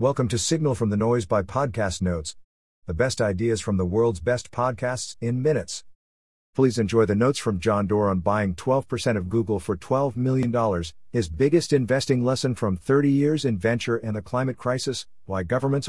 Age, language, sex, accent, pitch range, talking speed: 50-69, English, male, American, 90-125 Hz, 185 wpm